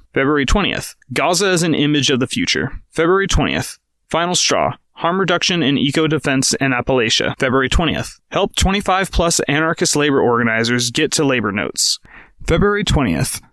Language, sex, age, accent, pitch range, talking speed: English, male, 30-49, American, 120-160 Hz, 140 wpm